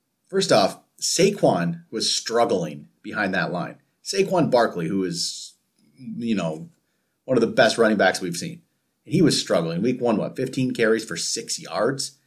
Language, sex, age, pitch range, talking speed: English, male, 30-49, 125-165 Hz, 165 wpm